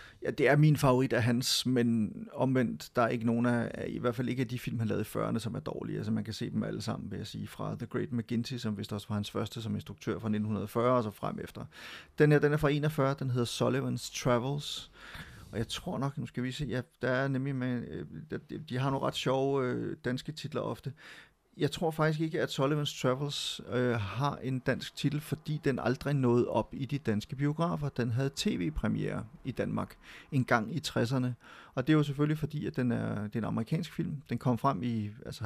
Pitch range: 115-145 Hz